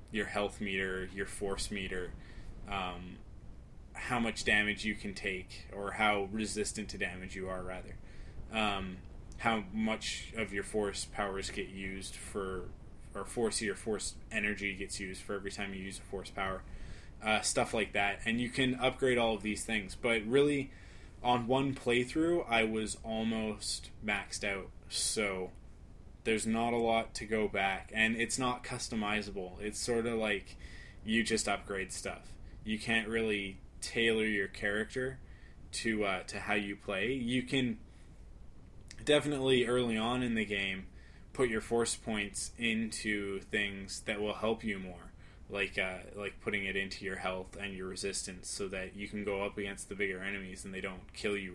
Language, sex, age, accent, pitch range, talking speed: English, male, 20-39, American, 95-110 Hz, 170 wpm